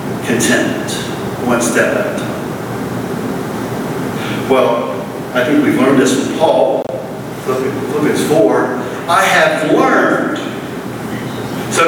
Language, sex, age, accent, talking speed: English, male, 50-69, American, 100 wpm